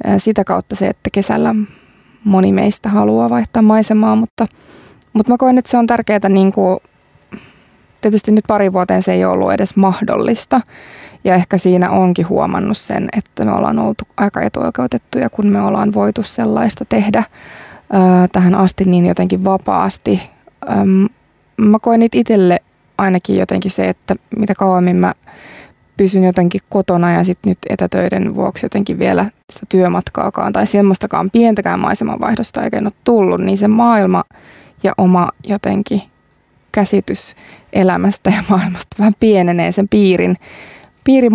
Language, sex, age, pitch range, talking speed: Finnish, female, 20-39, 185-215 Hz, 135 wpm